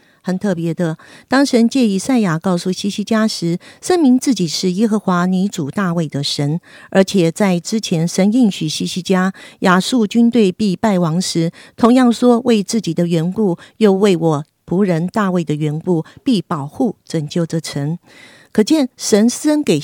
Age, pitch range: 50-69, 170-220 Hz